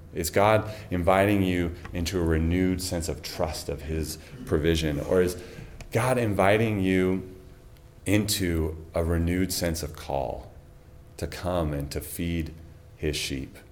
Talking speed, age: 135 wpm, 30-49